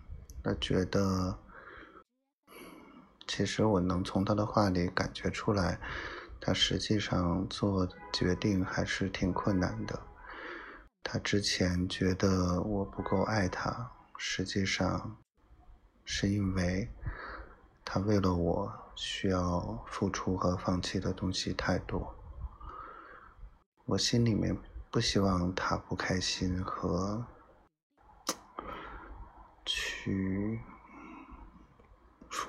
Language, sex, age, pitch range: Chinese, male, 20-39, 90-105 Hz